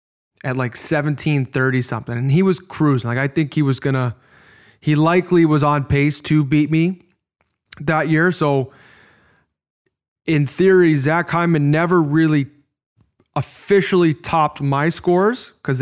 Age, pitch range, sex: 20-39, 135-155 Hz, male